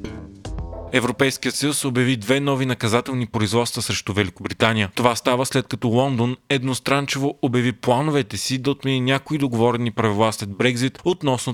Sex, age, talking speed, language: male, 30-49, 135 wpm, Bulgarian